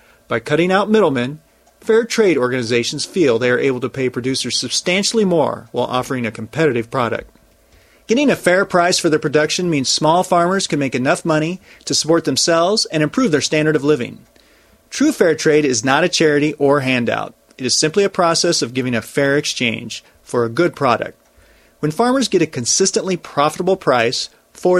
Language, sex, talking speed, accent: English, male, 180 wpm, American